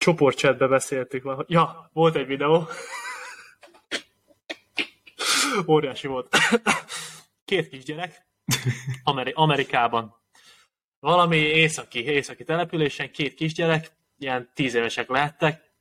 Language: Hungarian